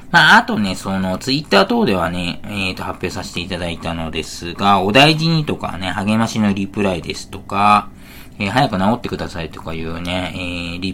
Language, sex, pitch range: Japanese, male, 85-125 Hz